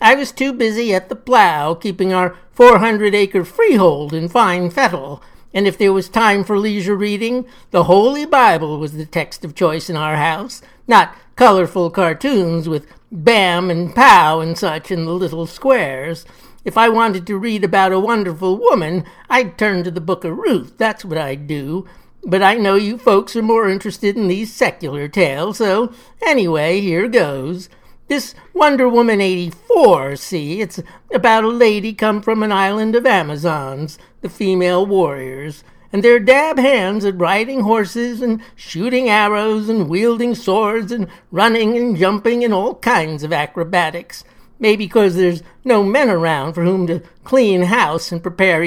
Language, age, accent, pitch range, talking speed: English, 60-79, American, 170-225 Hz, 165 wpm